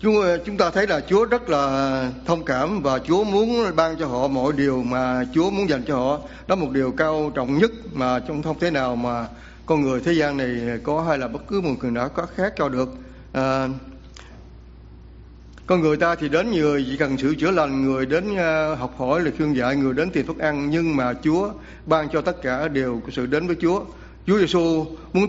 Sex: male